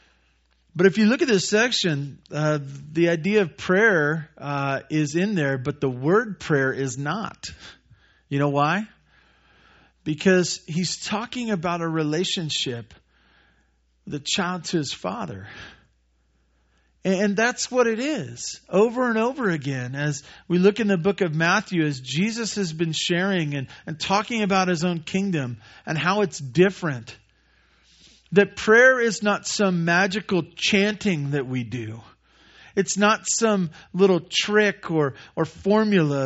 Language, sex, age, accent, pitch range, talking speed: English, male, 50-69, American, 135-190 Hz, 145 wpm